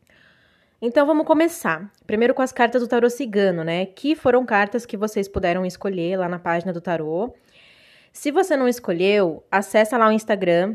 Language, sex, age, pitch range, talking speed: Portuguese, female, 20-39, 185-240 Hz, 175 wpm